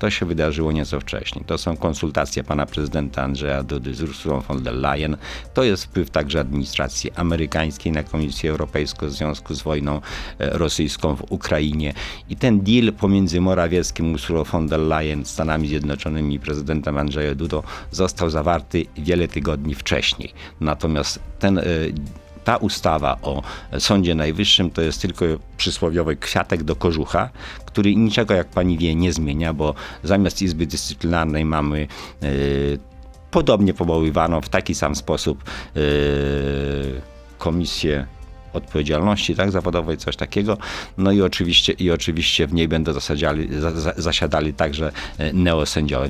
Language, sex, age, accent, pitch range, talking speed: Polish, male, 50-69, native, 75-90 Hz, 135 wpm